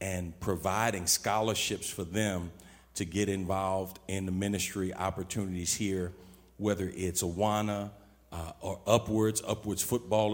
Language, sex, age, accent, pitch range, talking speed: English, male, 40-59, American, 90-105 Hz, 120 wpm